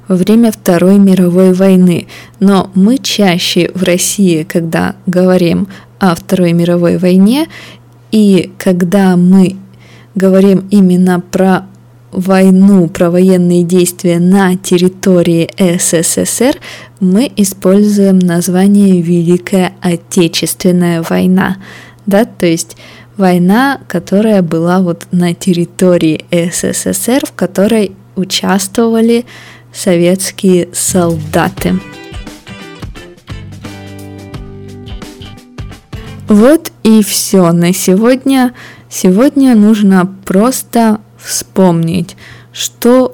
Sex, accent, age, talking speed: female, native, 20-39, 80 wpm